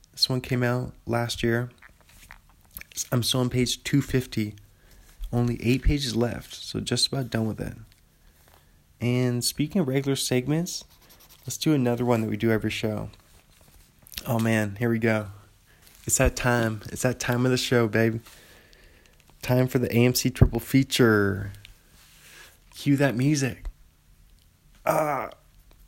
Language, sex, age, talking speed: English, male, 20-39, 140 wpm